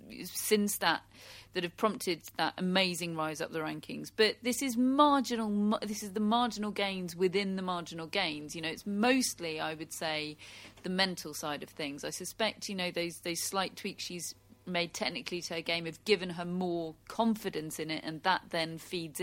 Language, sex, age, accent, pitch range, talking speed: English, female, 40-59, British, 165-220 Hz, 190 wpm